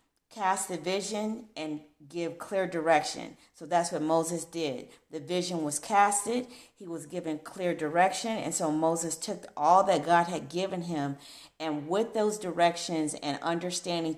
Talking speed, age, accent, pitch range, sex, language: 155 wpm, 40-59, American, 160-195 Hz, female, English